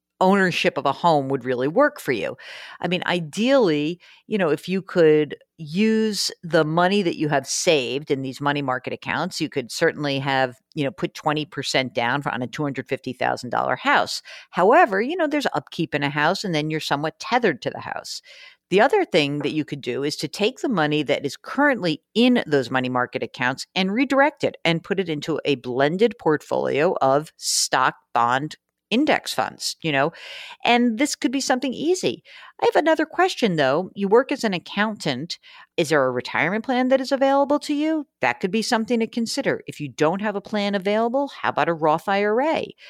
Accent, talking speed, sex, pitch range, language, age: American, 195 wpm, female, 145-235 Hz, English, 50-69